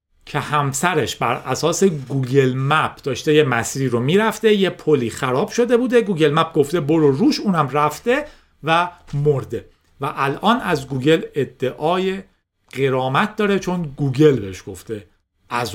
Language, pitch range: Persian, 125-185 Hz